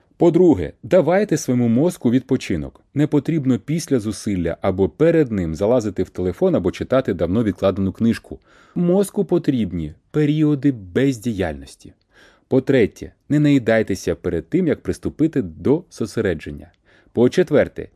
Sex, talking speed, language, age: male, 115 wpm, Ukrainian, 30-49